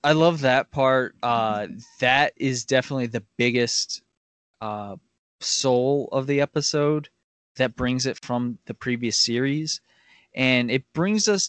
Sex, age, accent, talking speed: male, 20-39, American, 135 wpm